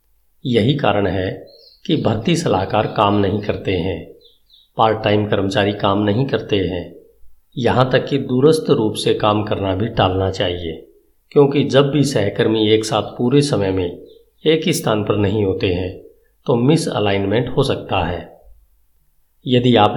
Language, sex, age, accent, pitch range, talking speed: Hindi, male, 50-69, native, 100-135 Hz, 155 wpm